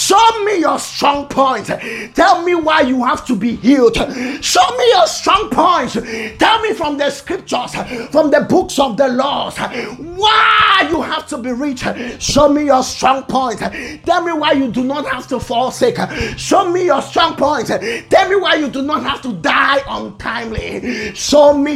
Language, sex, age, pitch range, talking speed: English, male, 30-49, 195-285 Hz, 185 wpm